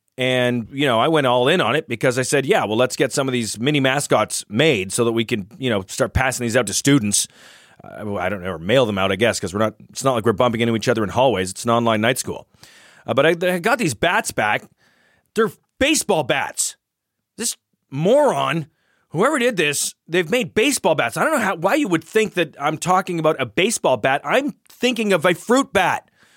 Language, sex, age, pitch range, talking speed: English, male, 30-49, 120-180 Hz, 235 wpm